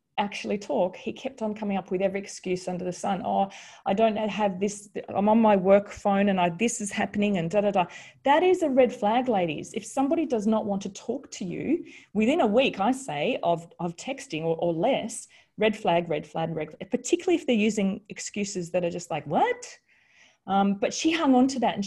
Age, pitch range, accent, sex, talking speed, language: 30-49, 180-225 Hz, Australian, female, 225 wpm, English